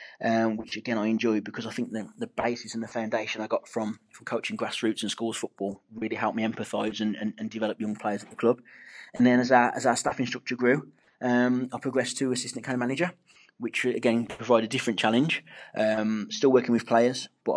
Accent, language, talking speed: British, English, 215 wpm